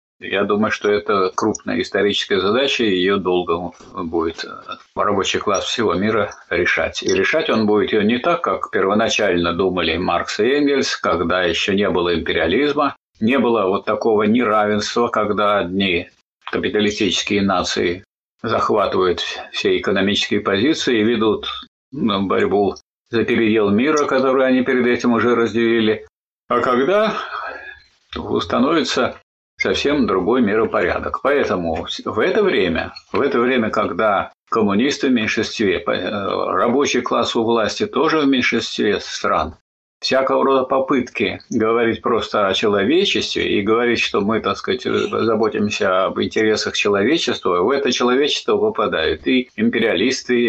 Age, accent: 50-69, native